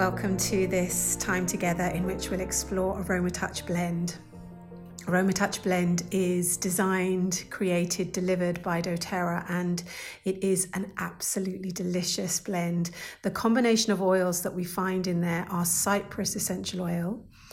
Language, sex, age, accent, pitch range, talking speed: English, female, 40-59, British, 180-200 Hz, 135 wpm